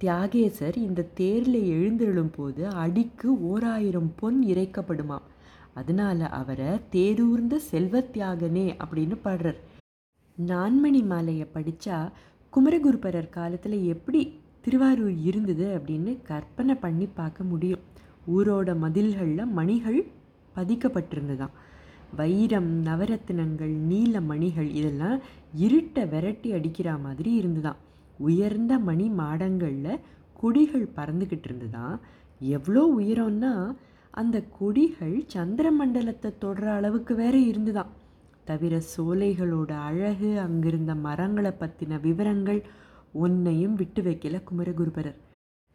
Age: 20-39